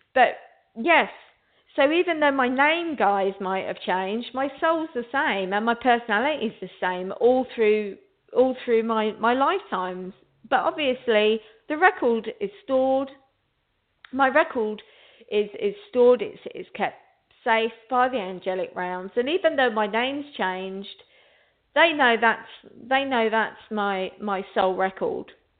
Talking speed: 145 wpm